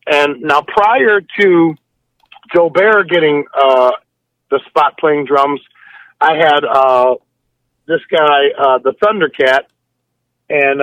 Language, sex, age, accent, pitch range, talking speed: English, male, 40-59, American, 135-175 Hz, 115 wpm